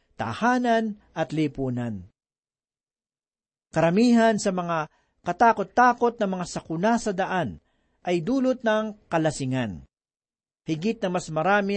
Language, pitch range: Filipino, 160-215 Hz